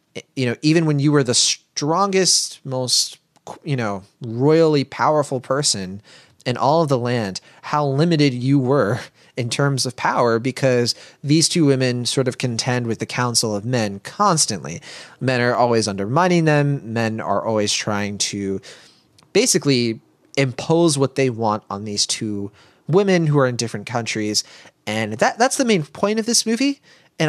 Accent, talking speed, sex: American, 165 wpm, male